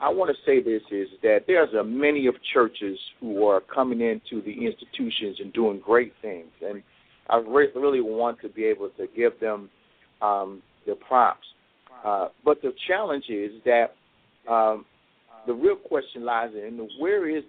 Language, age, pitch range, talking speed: English, 50-69, 115-170 Hz, 165 wpm